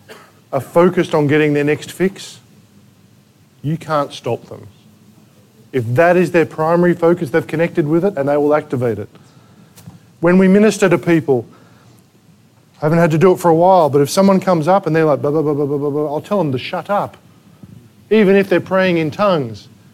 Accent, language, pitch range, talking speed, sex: Australian, English, 145-200 Hz, 200 wpm, male